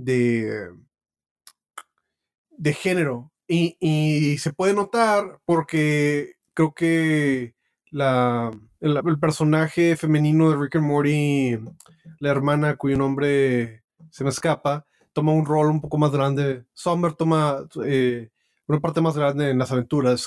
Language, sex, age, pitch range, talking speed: Spanish, male, 30-49, 130-160 Hz, 135 wpm